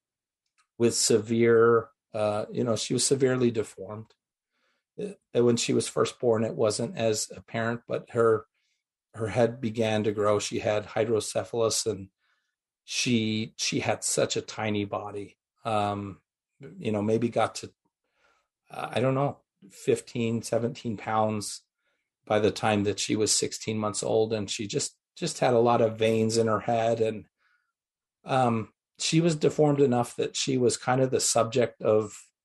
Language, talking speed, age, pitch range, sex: English, 155 wpm, 40-59, 110-120 Hz, male